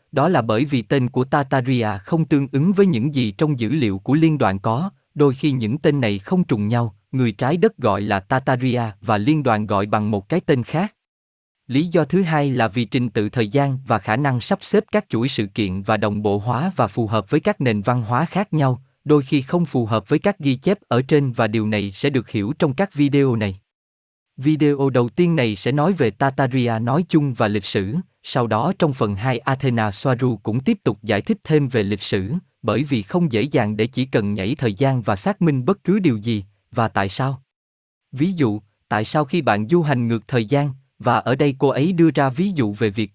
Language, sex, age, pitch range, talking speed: Vietnamese, male, 20-39, 110-150 Hz, 235 wpm